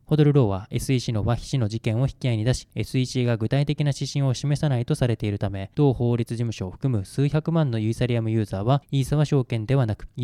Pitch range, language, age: 115-140 Hz, Japanese, 20-39